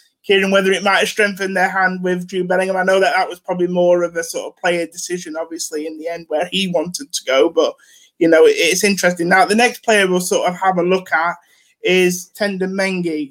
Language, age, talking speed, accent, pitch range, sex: English, 20-39, 230 wpm, British, 170-190 Hz, male